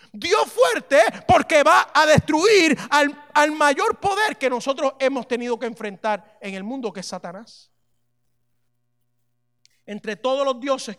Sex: male